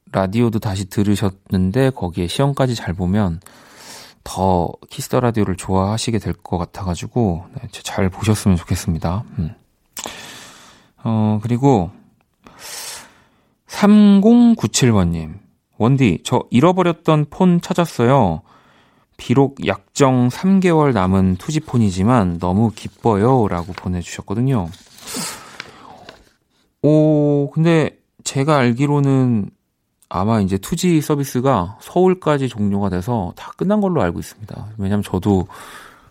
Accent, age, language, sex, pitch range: native, 30-49, Korean, male, 95-135 Hz